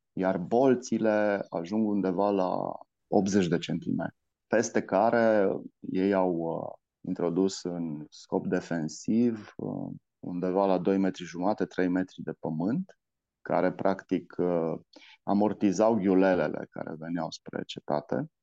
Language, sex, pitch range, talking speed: Romanian, male, 90-105 Hz, 115 wpm